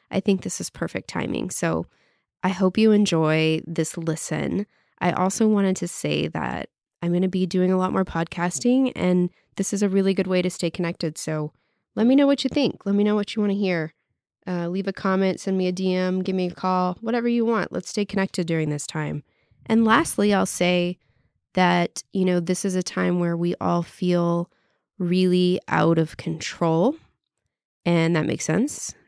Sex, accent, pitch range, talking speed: female, American, 175-210 Hz, 200 wpm